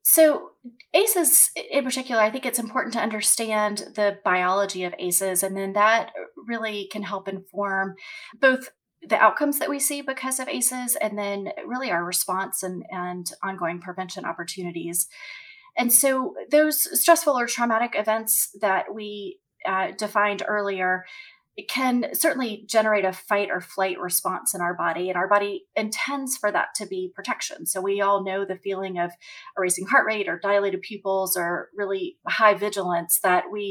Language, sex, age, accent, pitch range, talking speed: English, female, 30-49, American, 185-235 Hz, 165 wpm